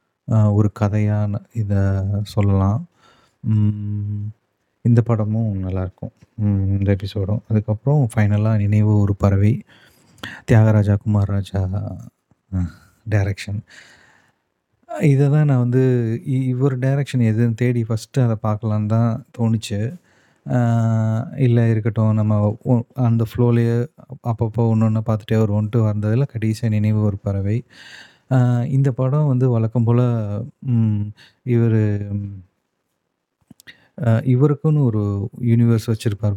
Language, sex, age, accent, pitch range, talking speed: Tamil, male, 30-49, native, 105-120 Hz, 90 wpm